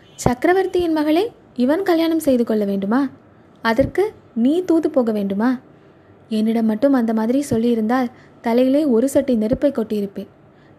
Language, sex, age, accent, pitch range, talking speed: Tamil, female, 20-39, native, 220-280 Hz, 115 wpm